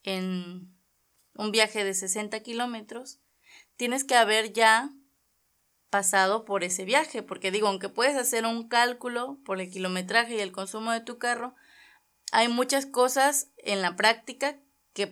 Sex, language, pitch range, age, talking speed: female, Spanish, 195-245 Hz, 20-39, 145 wpm